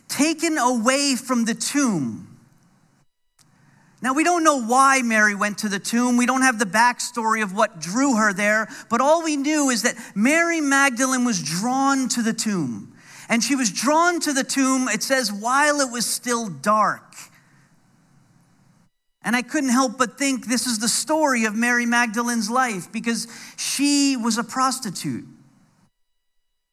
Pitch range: 205-265 Hz